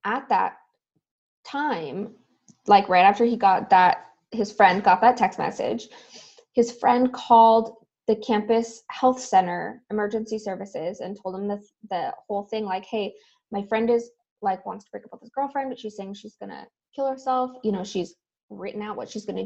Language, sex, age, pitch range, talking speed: English, female, 20-39, 195-240 Hz, 180 wpm